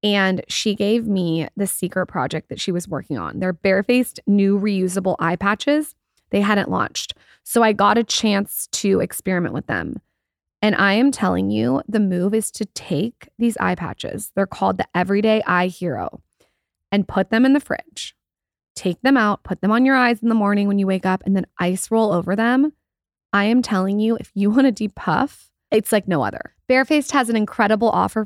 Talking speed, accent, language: 200 wpm, American, English